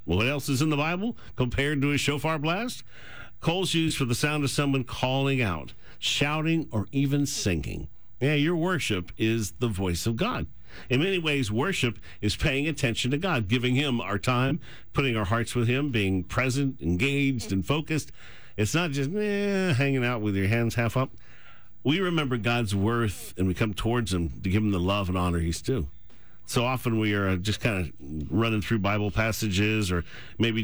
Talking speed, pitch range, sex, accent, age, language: 190 wpm, 100-135 Hz, male, American, 50-69, English